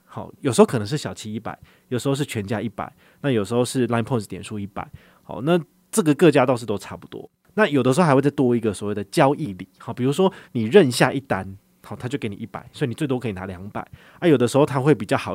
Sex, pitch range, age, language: male, 110-145 Hz, 20-39, Chinese